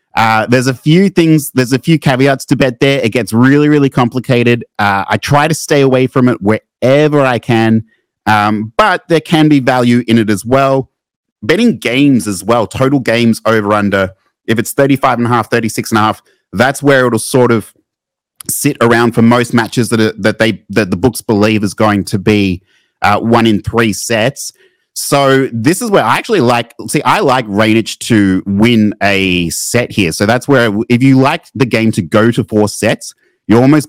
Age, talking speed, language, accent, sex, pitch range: 30-49, 200 wpm, English, Australian, male, 105-135 Hz